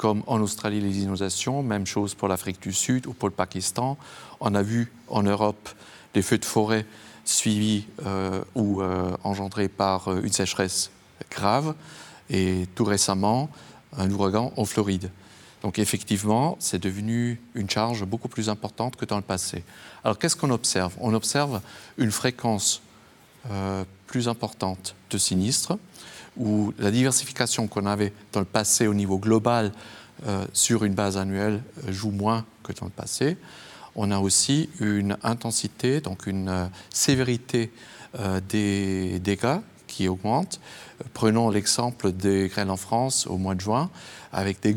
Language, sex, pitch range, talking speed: French, male, 100-120 Hz, 155 wpm